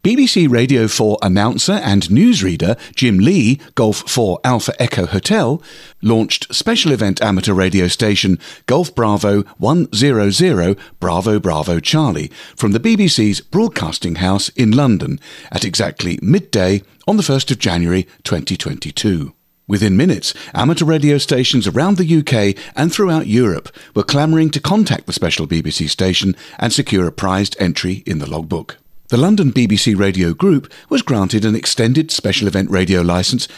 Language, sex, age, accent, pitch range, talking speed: English, male, 50-69, British, 95-145 Hz, 140 wpm